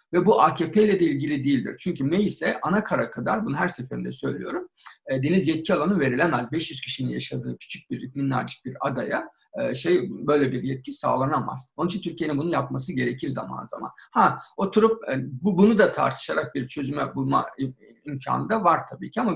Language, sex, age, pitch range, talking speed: Turkish, male, 50-69, 135-185 Hz, 165 wpm